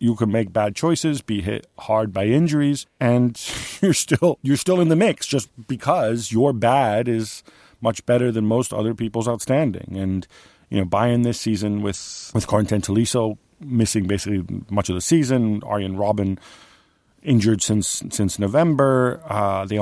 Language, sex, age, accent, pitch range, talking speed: English, male, 40-59, American, 100-115 Hz, 160 wpm